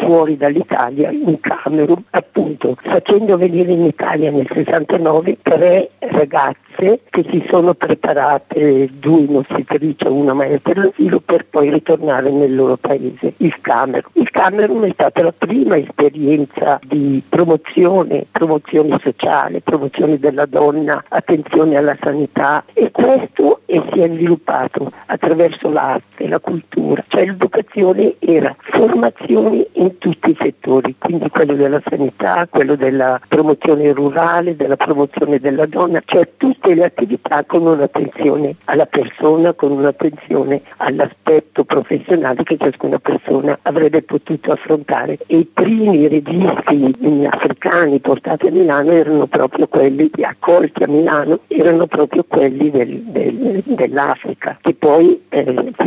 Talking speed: 130 wpm